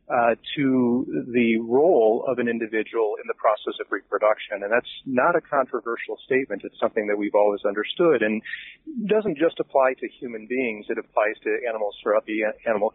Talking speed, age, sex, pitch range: 175 wpm, 40-59, male, 110-145 Hz